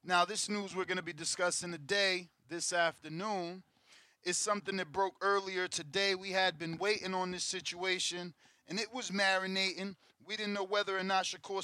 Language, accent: English, American